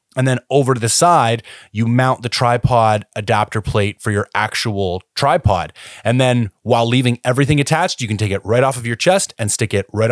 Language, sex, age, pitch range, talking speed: English, male, 30-49, 105-130 Hz, 210 wpm